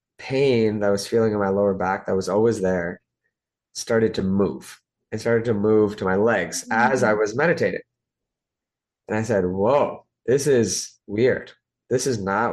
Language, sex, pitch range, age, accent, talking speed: English, male, 100-120 Hz, 20-39, American, 175 wpm